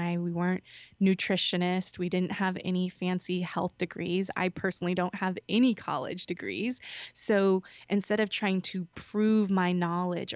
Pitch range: 180-210 Hz